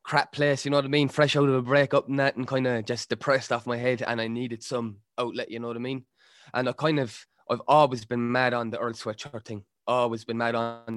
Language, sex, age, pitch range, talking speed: English, male, 20-39, 115-140 Hz, 270 wpm